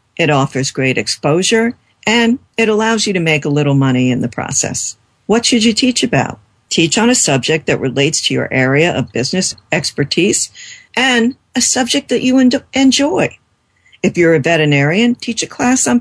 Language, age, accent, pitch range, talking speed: English, 50-69, American, 140-205 Hz, 175 wpm